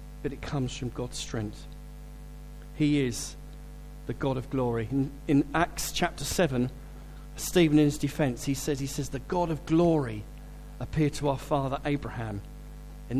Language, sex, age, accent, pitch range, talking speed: English, male, 40-59, British, 130-155 Hz, 160 wpm